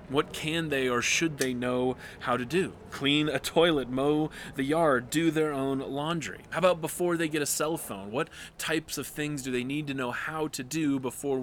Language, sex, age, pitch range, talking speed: English, male, 20-39, 120-150 Hz, 215 wpm